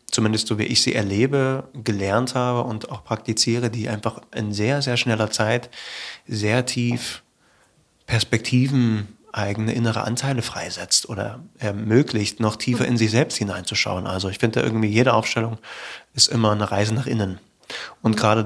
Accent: German